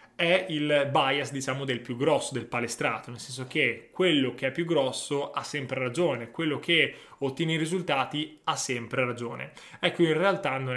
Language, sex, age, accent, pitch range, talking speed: Italian, male, 20-39, native, 130-165 Hz, 180 wpm